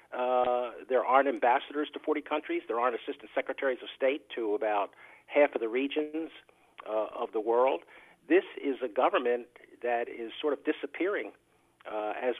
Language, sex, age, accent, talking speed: English, male, 50-69, American, 165 wpm